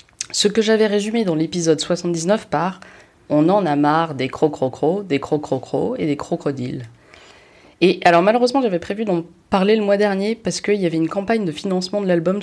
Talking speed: 215 wpm